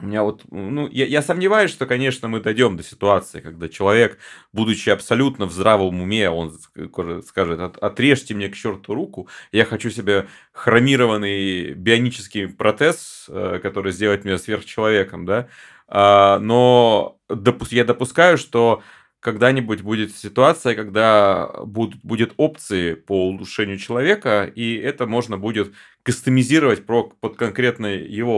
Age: 30-49